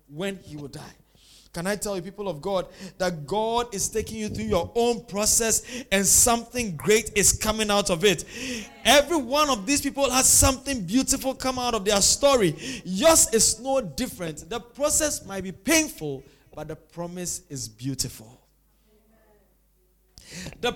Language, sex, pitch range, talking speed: English, male, 175-260 Hz, 160 wpm